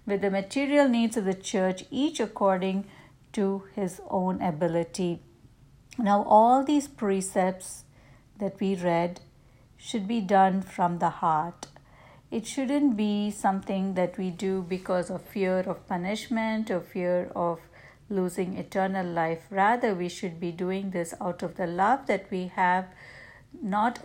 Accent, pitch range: Indian, 170-200 Hz